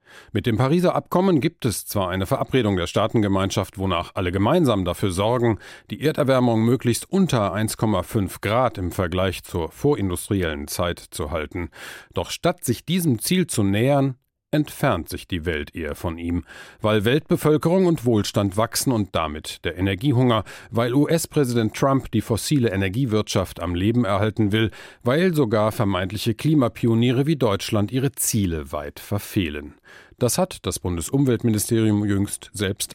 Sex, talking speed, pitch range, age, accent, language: male, 140 wpm, 95-125 Hz, 40-59, German, German